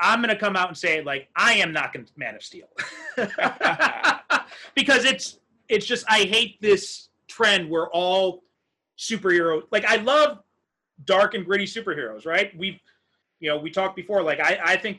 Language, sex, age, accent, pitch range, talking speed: English, male, 30-49, American, 155-205 Hz, 180 wpm